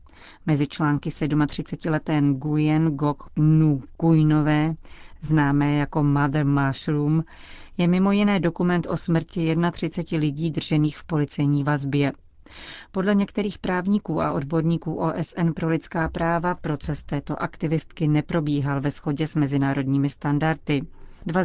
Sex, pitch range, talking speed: female, 145-165 Hz, 115 wpm